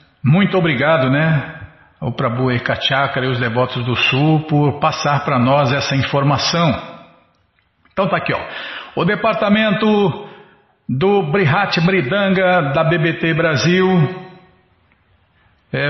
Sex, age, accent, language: male, 50-69, Brazilian, Portuguese